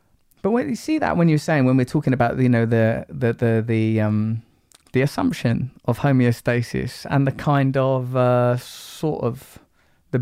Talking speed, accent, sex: 180 wpm, British, male